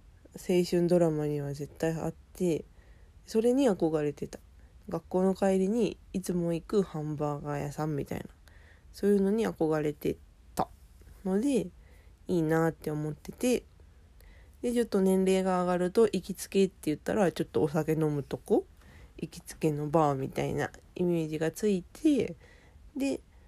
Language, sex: Japanese, female